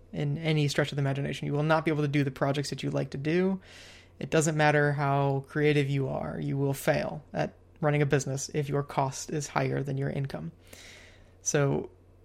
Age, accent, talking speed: 20-39, American, 210 wpm